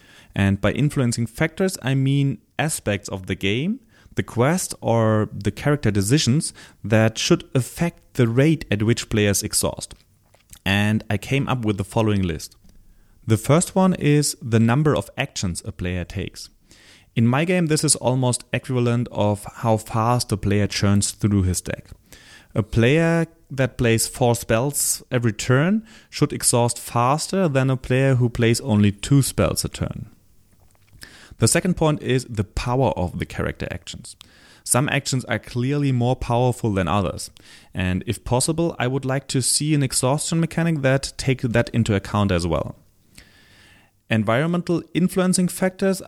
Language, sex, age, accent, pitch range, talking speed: English, male, 30-49, German, 100-140 Hz, 155 wpm